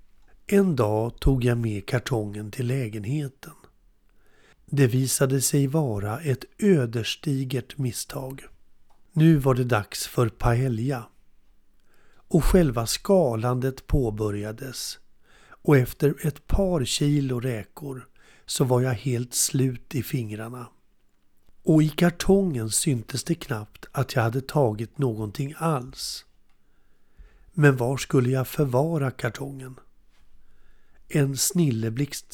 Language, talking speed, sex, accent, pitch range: Swedish, 110 wpm, male, native, 115-145 Hz